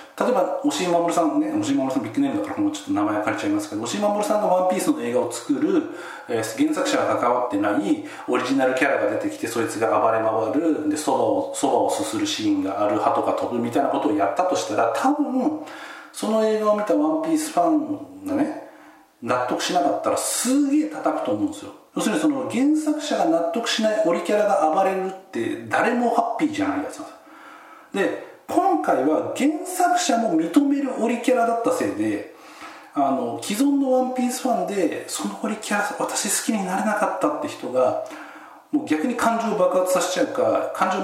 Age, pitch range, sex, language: 40-59, 215-305 Hz, male, Japanese